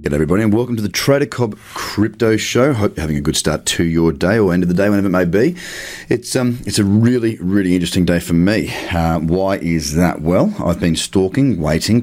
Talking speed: 235 wpm